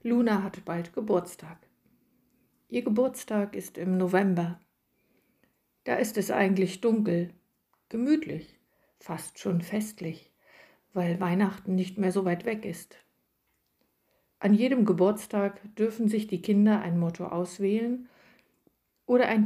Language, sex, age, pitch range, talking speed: German, female, 60-79, 175-225 Hz, 115 wpm